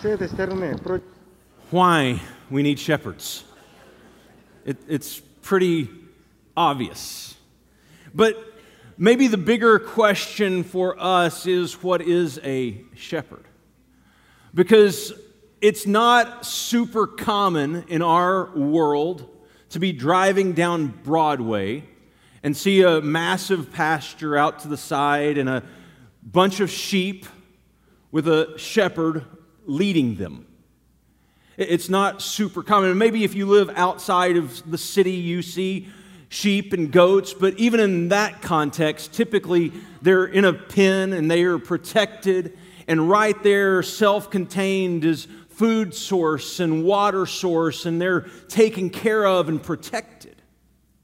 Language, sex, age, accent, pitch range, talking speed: English, male, 40-59, American, 160-200 Hz, 120 wpm